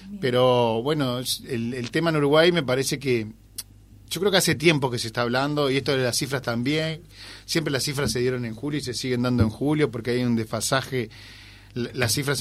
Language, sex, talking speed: Spanish, male, 215 wpm